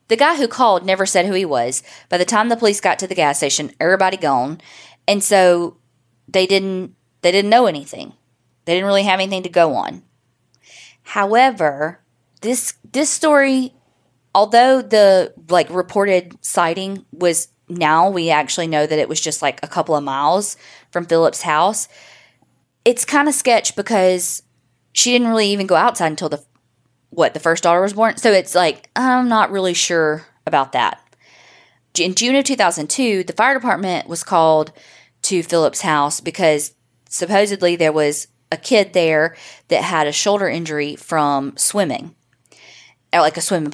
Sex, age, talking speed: female, 20-39, 165 wpm